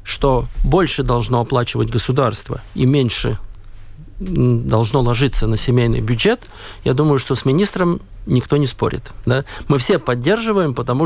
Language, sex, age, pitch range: Russian, male, 50-69, 120-155 Hz